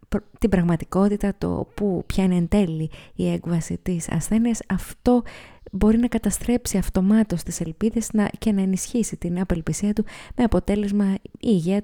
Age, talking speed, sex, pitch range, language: 20-39, 135 wpm, female, 170-210 Hz, Greek